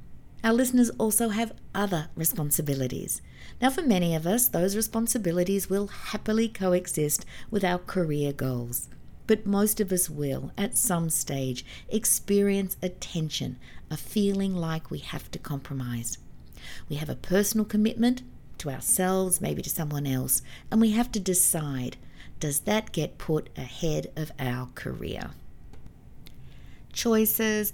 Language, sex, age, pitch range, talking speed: English, female, 50-69, 155-215 Hz, 135 wpm